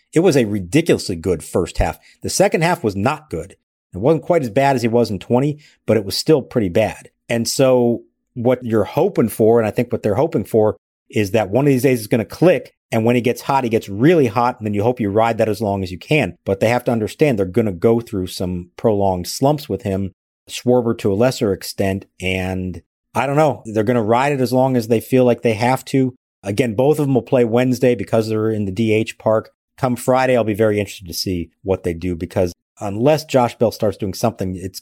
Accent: American